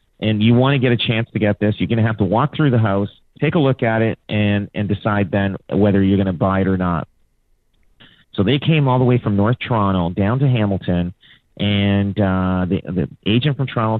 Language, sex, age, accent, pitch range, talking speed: English, male, 40-59, American, 100-135 Hz, 235 wpm